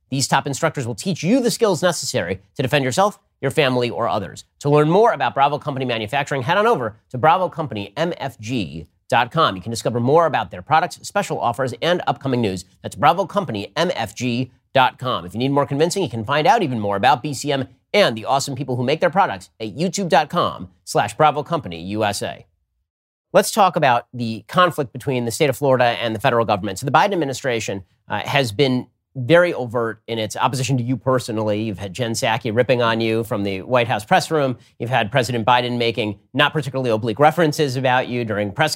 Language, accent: English, American